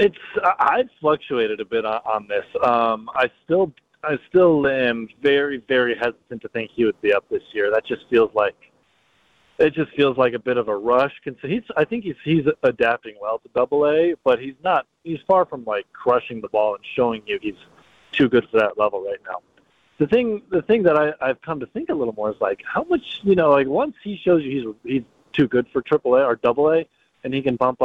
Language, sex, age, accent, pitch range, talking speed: English, male, 30-49, American, 135-200 Hz, 230 wpm